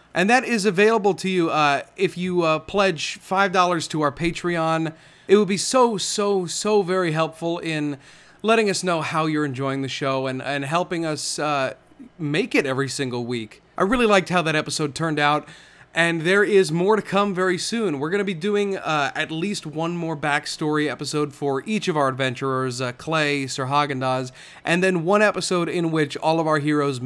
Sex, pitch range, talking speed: male, 140-185 Hz, 195 wpm